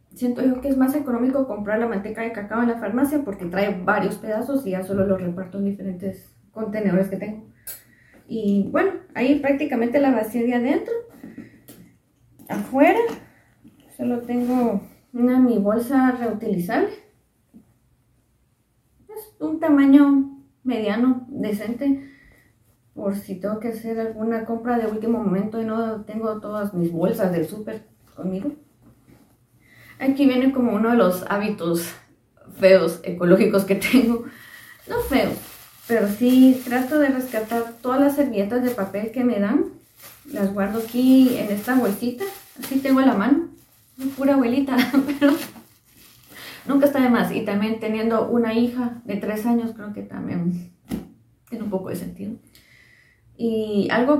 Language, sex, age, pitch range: Spanish, female, 30-49, 205-265 Hz